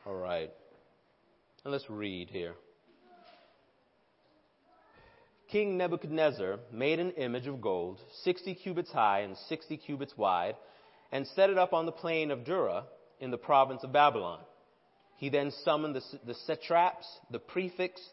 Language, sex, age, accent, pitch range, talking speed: English, male, 30-49, American, 140-180 Hz, 140 wpm